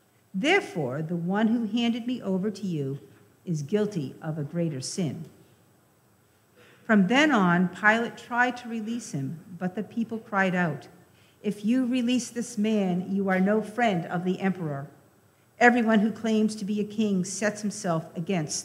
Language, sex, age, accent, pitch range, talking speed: English, female, 50-69, American, 155-210 Hz, 160 wpm